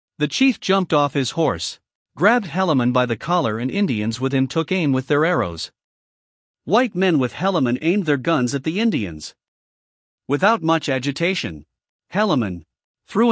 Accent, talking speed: American, 160 wpm